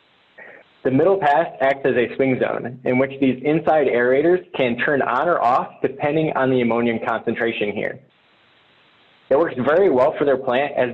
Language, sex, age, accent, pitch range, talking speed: English, male, 20-39, American, 125-160 Hz, 175 wpm